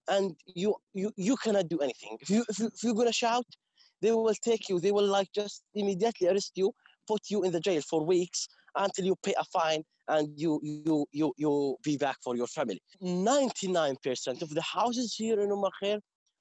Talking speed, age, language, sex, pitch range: 205 wpm, 20-39, English, male, 165-210 Hz